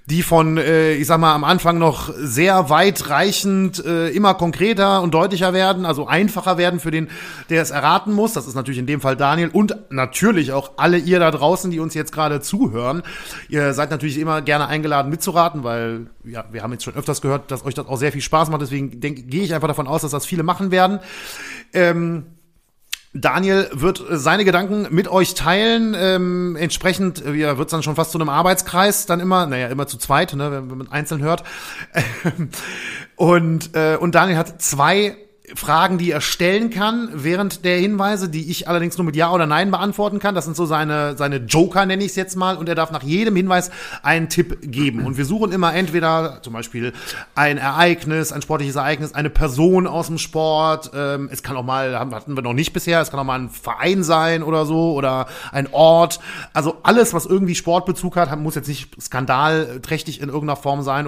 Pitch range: 145-180 Hz